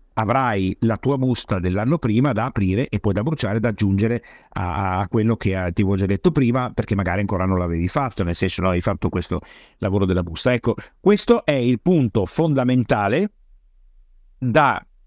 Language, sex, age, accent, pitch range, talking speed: Italian, male, 50-69, native, 100-135 Hz, 185 wpm